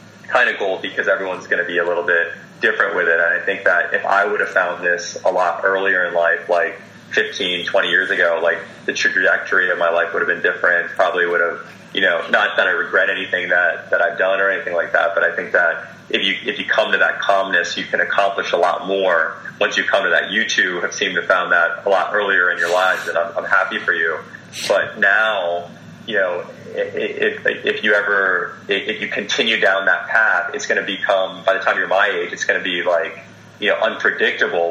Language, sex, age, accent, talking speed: English, male, 20-39, American, 235 wpm